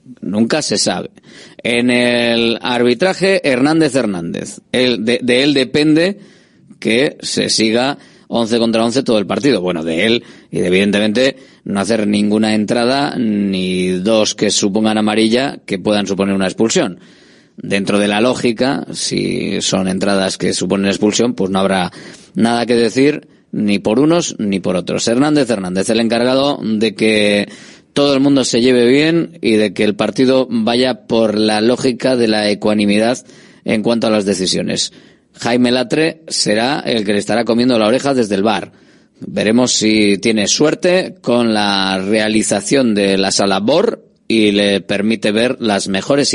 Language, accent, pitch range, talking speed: Spanish, Spanish, 105-125 Hz, 155 wpm